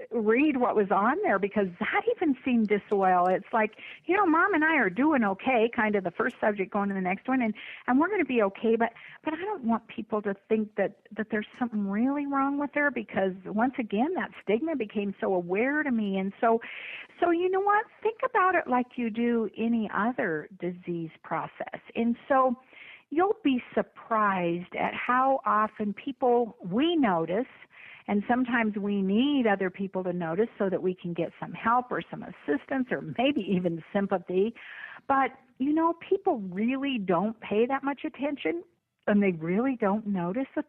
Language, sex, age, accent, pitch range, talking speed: English, female, 50-69, American, 205-290 Hz, 185 wpm